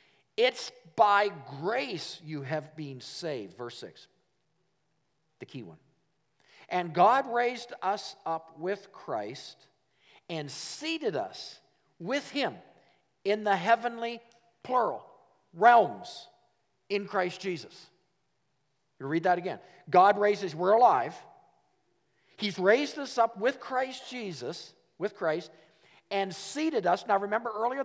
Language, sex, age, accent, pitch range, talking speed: English, male, 50-69, American, 190-250 Hz, 120 wpm